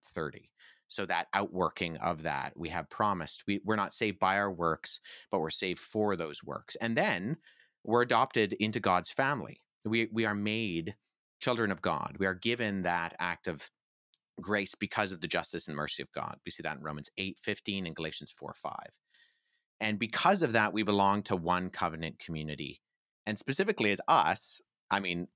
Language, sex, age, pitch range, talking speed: English, male, 30-49, 90-115 Hz, 185 wpm